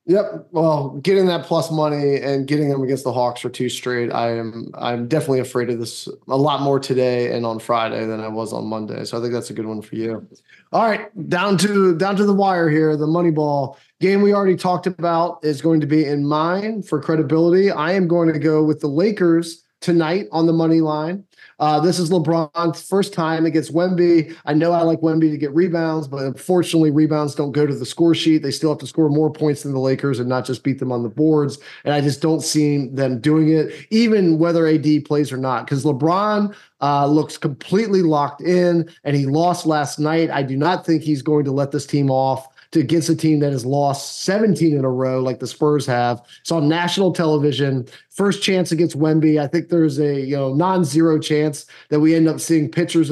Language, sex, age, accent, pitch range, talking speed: English, male, 20-39, American, 140-165 Hz, 225 wpm